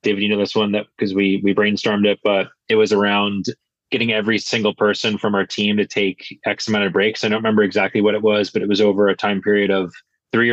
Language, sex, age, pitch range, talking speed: English, male, 20-39, 100-110 Hz, 250 wpm